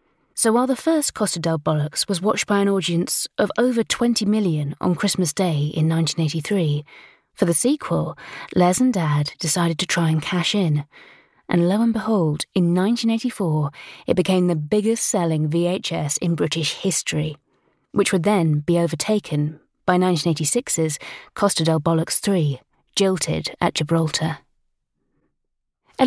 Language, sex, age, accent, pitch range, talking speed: English, female, 20-39, British, 165-225 Hz, 145 wpm